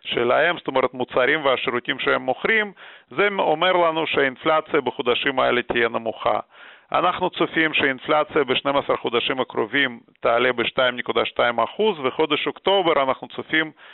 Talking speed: 120 wpm